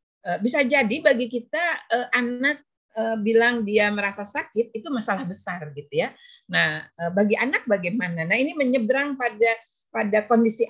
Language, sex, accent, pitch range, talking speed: Indonesian, female, native, 200-245 Hz, 135 wpm